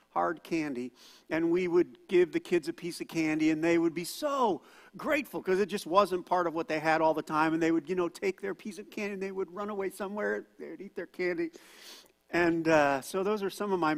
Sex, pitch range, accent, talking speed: male, 170-230 Hz, American, 255 wpm